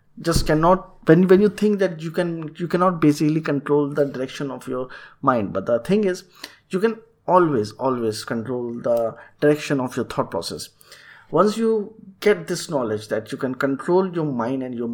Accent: Indian